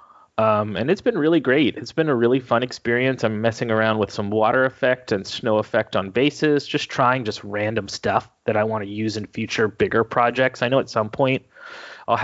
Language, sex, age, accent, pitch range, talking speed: English, male, 20-39, American, 110-135 Hz, 215 wpm